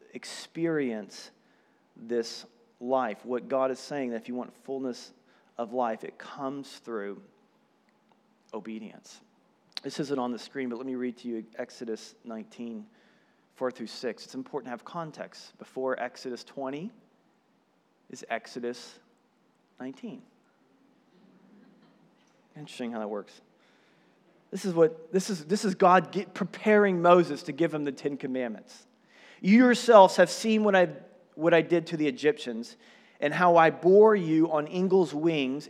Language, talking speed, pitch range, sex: English, 140 wpm, 130-180 Hz, male